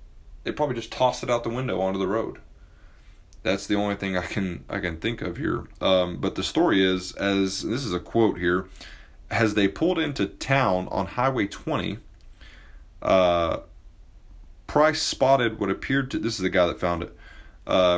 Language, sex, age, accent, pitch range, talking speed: English, male, 30-49, American, 90-110 Hz, 185 wpm